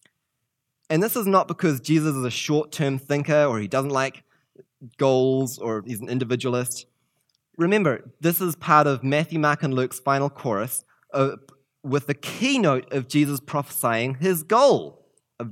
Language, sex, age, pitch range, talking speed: English, male, 20-39, 125-150 Hz, 150 wpm